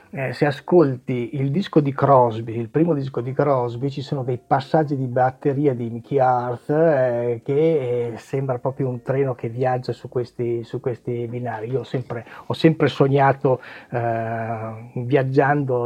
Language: Italian